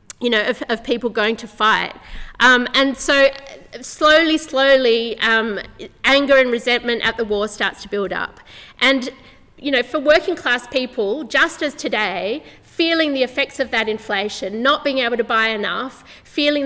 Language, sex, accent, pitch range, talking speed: English, female, Australian, 225-270 Hz, 170 wpm